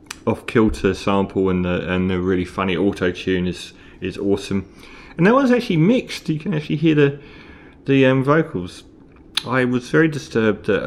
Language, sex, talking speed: English, male, 165 wpm